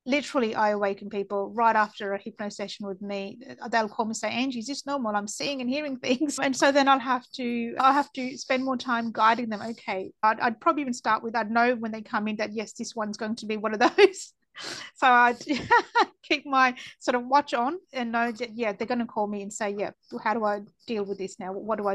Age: 30-49